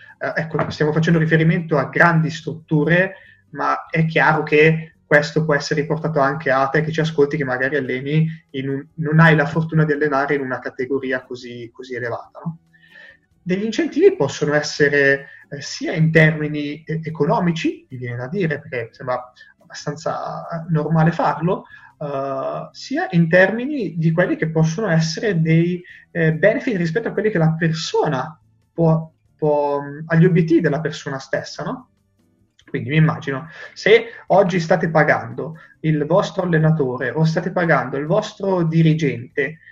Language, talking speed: Italian, 150 wpm